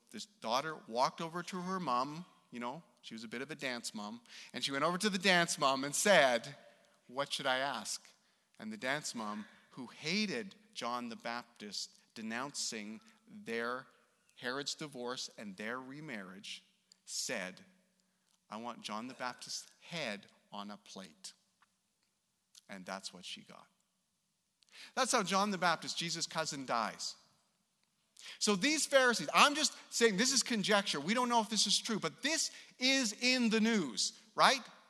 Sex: male